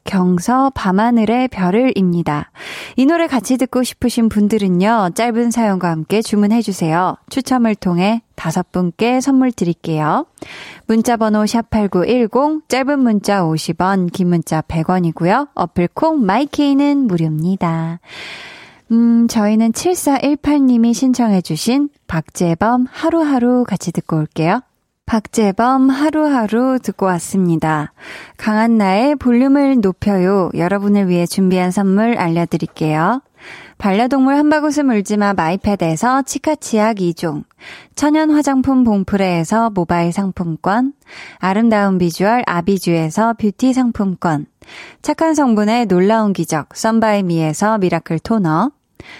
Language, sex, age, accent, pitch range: Korean, female, 20-39, native, 180-250 Hz